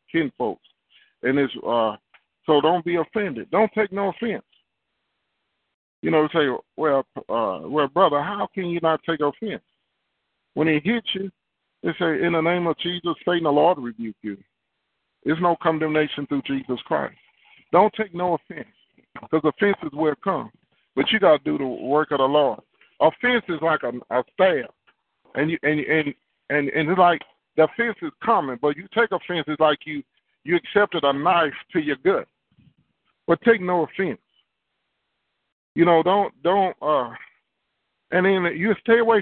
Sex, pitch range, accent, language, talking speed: male, 150-195 Hz, American, English, 175 wpm